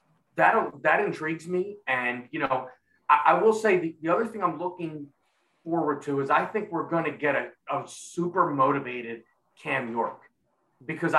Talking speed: 175 wpm